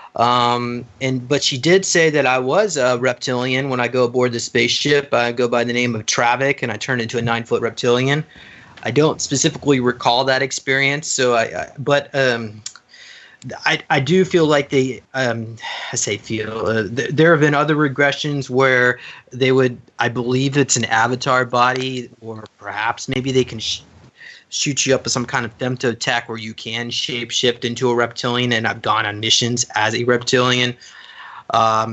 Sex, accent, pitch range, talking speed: male, American, 115-135 Hz, 180 wpm